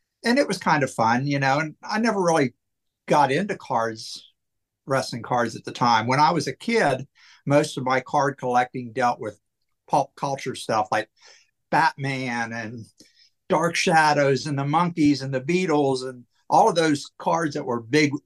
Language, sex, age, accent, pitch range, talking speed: English, male, 60-79, American, 125-155 Hz, 175 wpm